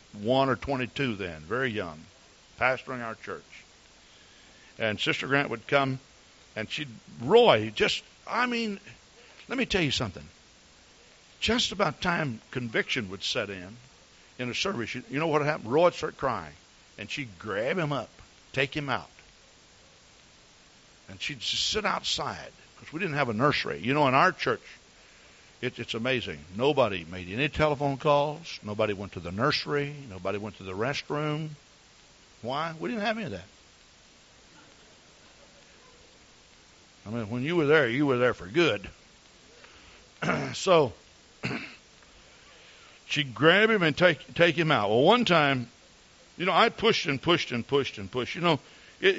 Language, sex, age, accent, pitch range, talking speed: English, male, 60-79, American, 110-155 Hz, 155 wpm